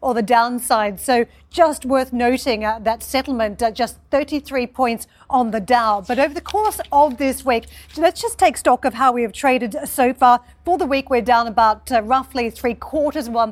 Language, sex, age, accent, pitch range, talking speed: English, female, 40-59, Australian, 230-270 Hz, 210 wpm